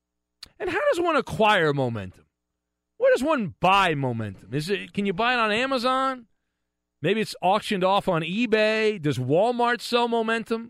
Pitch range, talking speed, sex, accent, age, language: 130-205 Hz, 165 wpm, male, American, 40-59, English